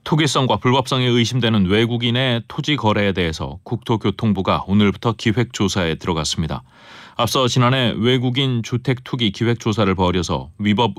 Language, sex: Korean, male